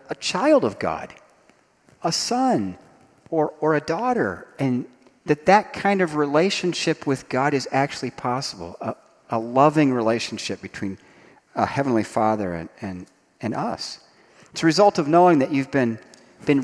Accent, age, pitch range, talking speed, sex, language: American, 40-59, 110-165 Hz, 150 wpm, male, English